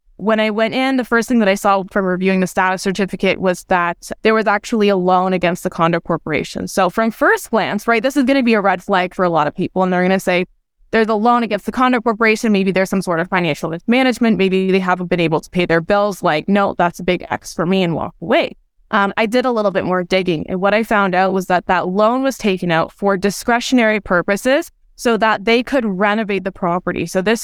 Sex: female